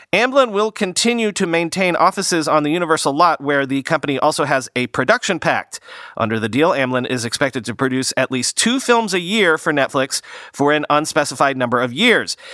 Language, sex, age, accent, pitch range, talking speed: English, male, 40-59, American, 125-170 Hz, 190 wpm